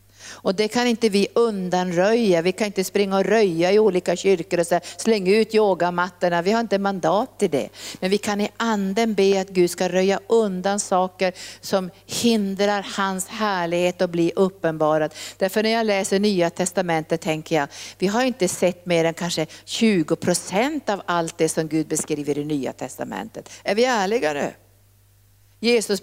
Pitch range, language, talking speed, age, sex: 165-210 Hz, Swedish, 170 wpm, 50-69, female